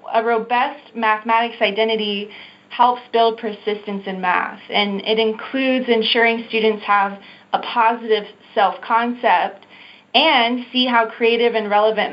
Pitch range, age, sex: 200-230 Hz, 20-39, female